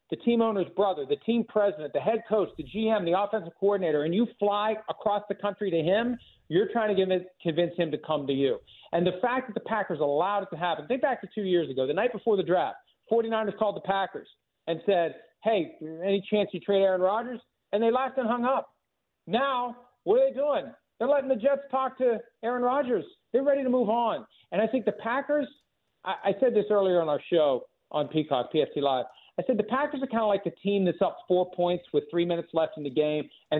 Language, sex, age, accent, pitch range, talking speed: English, male, 50-69, American, 160-220 Hz, 230 wpm